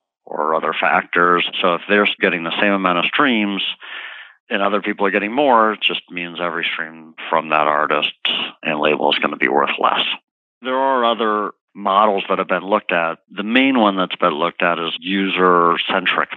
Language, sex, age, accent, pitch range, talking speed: English, male, 50-69, American, 85-100 Hz, 190 wpm